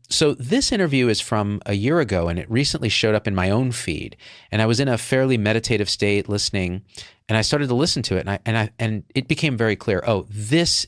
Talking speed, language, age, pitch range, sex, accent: 225 wpm, English, 40-59, 95-125 Hz, male, American